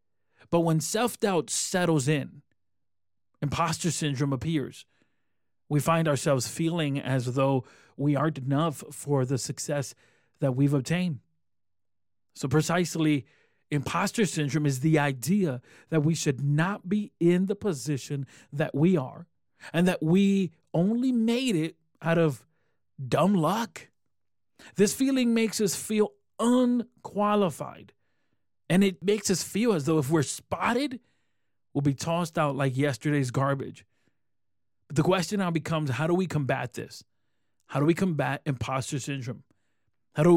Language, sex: English, male